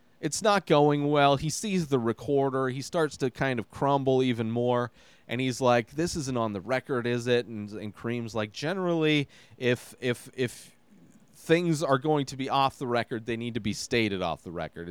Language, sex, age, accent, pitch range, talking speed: English, male, 30-49, American, 105-140 Hz, 200 wpm